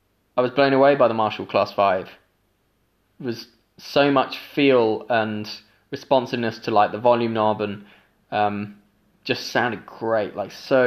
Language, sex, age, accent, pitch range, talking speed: English, male, 20-39, British, 105-130 Hz, 155 wpm